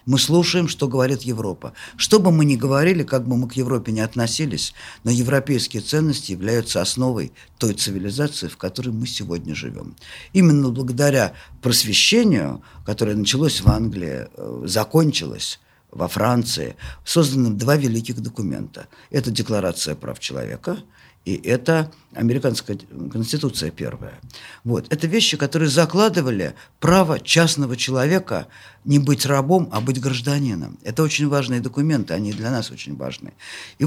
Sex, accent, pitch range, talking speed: male, native, 120-160 Hz, 135 wpm